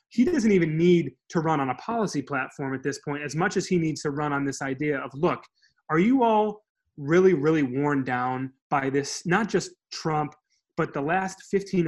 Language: English